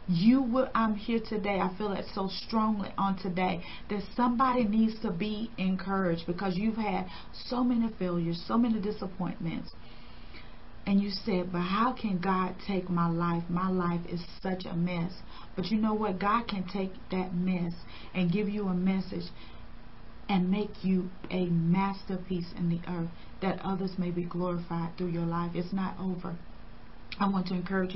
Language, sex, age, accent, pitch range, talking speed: English, female, 40-59, American, 175-195 Hz, 170 wpm